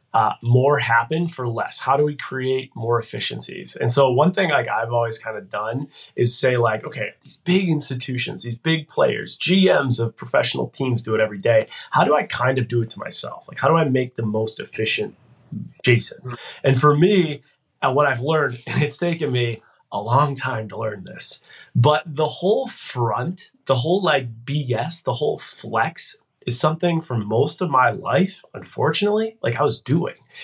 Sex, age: male, 20-39